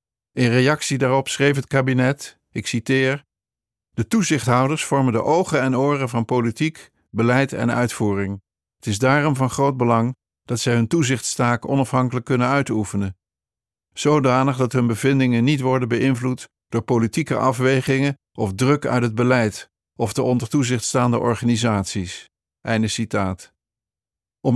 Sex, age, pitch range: male, 50-69, 110-130 Hz